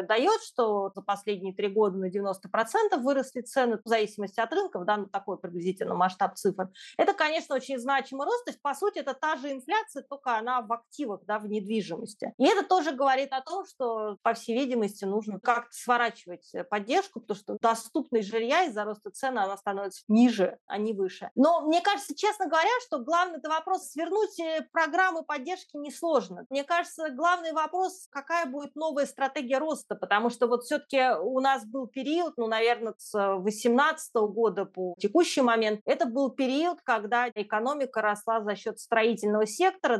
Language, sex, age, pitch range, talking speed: Russian, female, 30-49, 210-300 Hz, 170 wpm